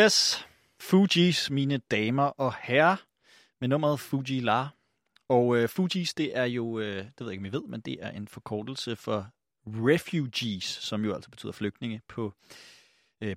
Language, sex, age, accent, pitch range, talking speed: Danish, male, 30-49, native, 115-155 Hz, 165 wpm